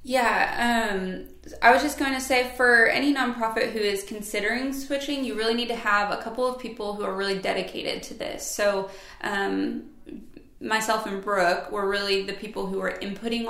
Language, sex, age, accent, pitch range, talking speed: English, female, 20-39, American, 195-230 Hz, 185 wpm